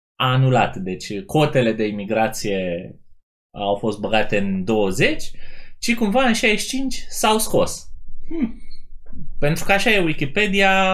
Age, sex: 20-39, male